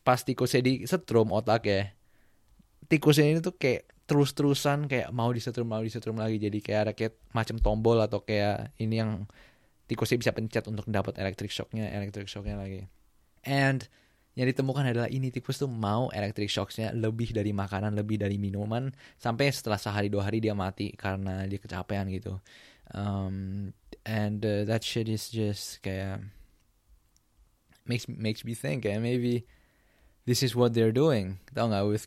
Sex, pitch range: male, 105-125 Hz